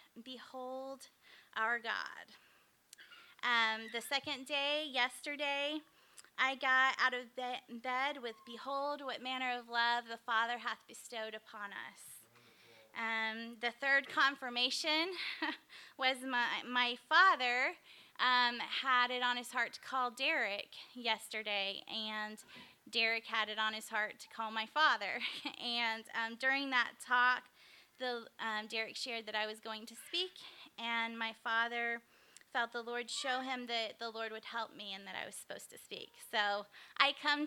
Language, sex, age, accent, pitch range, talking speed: English, female, 20-39, American, 230-275 Hz, 150 wpm